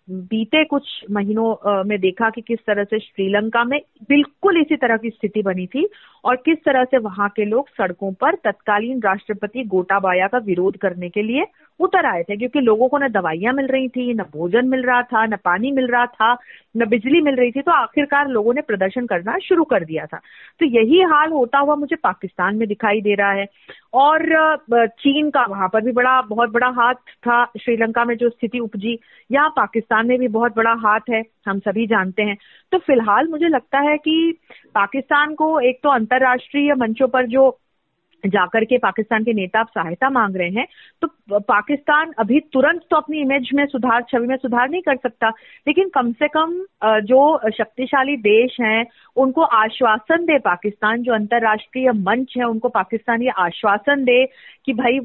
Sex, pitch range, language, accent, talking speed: female, 215-275 Hz, Hindi, native, 185 wpm